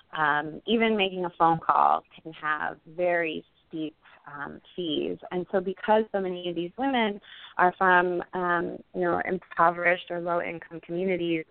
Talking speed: 150 wpm